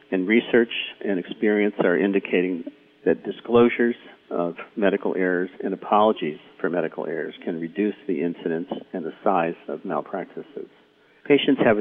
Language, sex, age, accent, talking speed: English, male, 50-69, American, 135 wpm